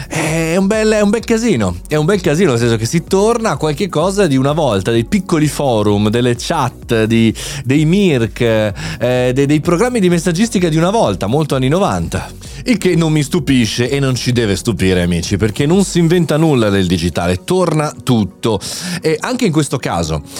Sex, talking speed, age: male, 190 wpm, 30-49